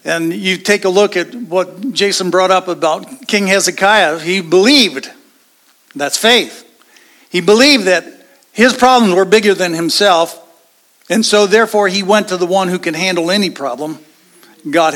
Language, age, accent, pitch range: English, 50-69, American, 180-230 Hz